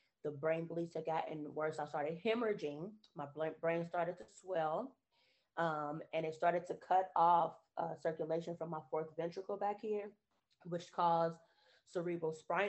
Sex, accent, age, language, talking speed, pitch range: female, American, 20-39, English, 150 wpm, 155-185 Hz